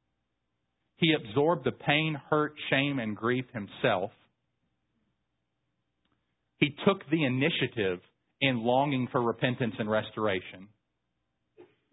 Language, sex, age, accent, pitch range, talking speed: English, male, 40-59, American, 90-125 Hz, 95 wpm